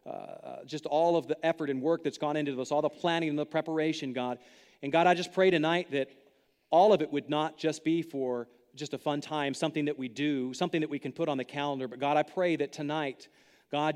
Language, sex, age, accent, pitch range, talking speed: English, male, 40-59, American, 145-190 Hz, 245 wpm